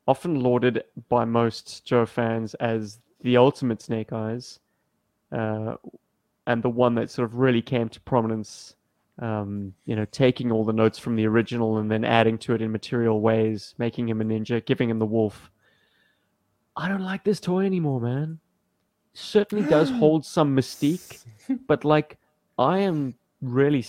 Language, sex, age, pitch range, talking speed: English, male, 30-49, 115-140 Hz, 165 wpm